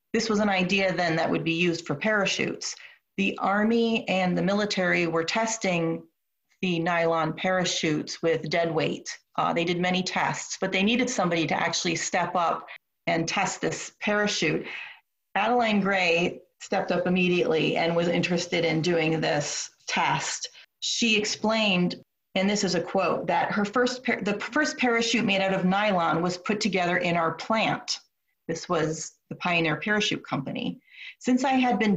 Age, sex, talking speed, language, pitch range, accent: 30-49, female, 165 wpm, English, 170-210 Hz, American